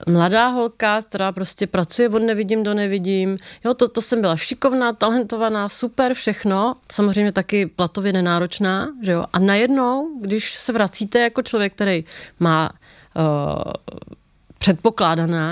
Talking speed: 130 wpm